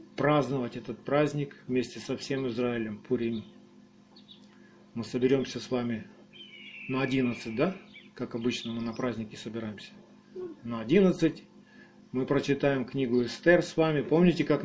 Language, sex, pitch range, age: Russian, male, 130-165 Hz, 40-59